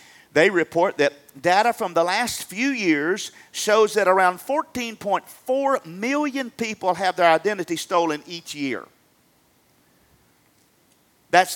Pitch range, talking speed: 155-210 Hz, 115 wpm